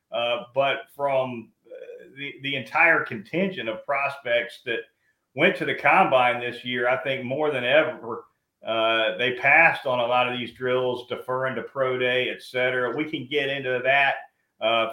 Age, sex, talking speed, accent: 40-59, male, 175 wpm, American